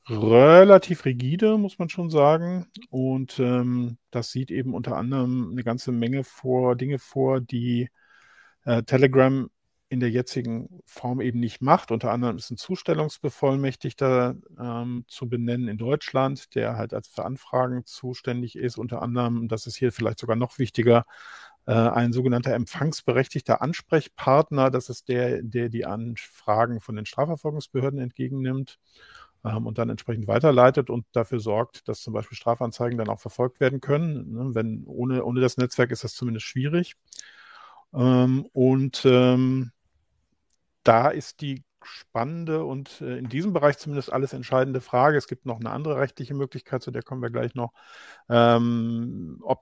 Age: 50-69